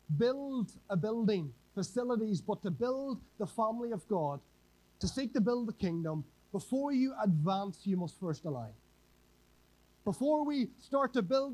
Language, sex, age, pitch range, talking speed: English, male, 30-49, 170-235 Hz, 150 wpm